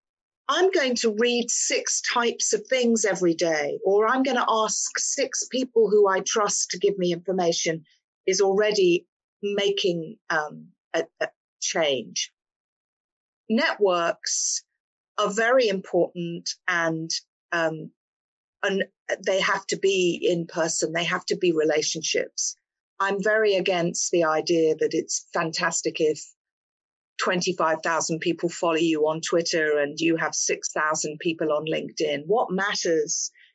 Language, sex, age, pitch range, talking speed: Hungarian, female, 50-69, 165-230 Hz, 130 wpm